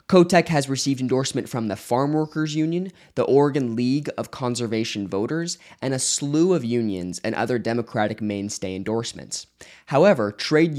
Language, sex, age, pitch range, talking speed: English, male, 20-39, 100-135 Hz, 150 wpm